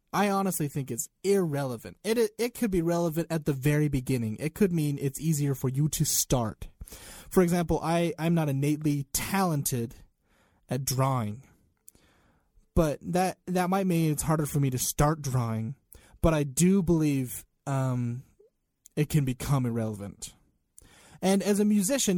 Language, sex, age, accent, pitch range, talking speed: English, male, 20-39, American, 125-175 Hz, 155 wpm